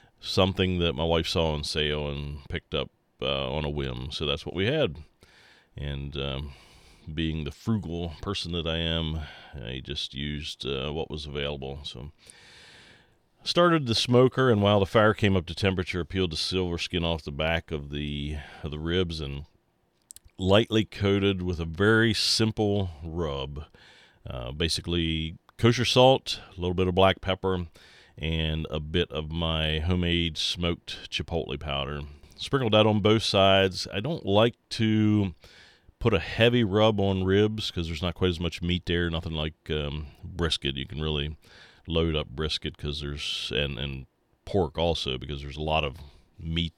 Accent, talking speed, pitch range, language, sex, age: American, 170 wpm, 75-95 Hz, English, male, 40-59